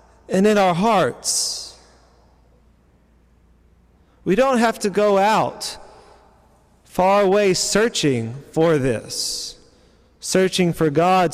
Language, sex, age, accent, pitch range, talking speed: English, male, 30-49, American, 115-185 Hz, 95 wpm